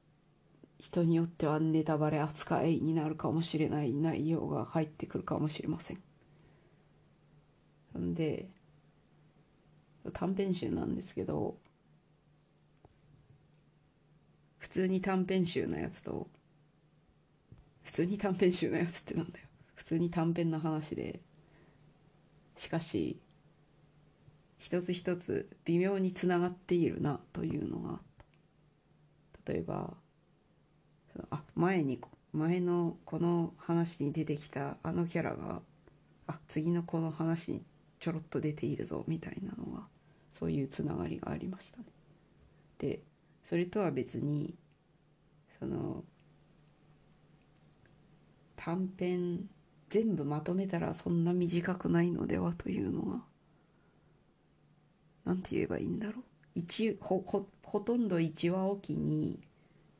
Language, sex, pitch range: Japanese, female, 150-175 Hz